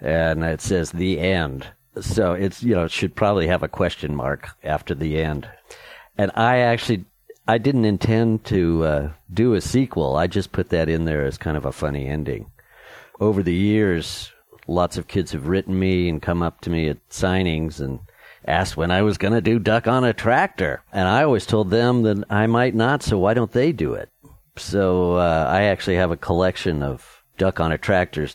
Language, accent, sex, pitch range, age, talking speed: English, American, male, 80-105 Hz, 50-69, 205 wpm